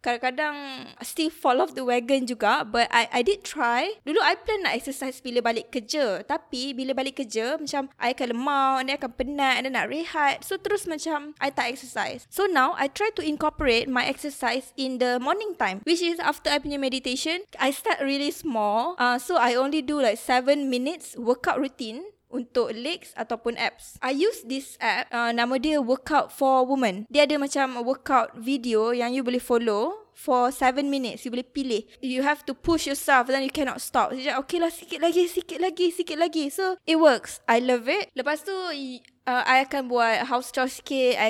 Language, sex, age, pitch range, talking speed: Malay, female, 20-39, 245-305 Hz, 195 wpm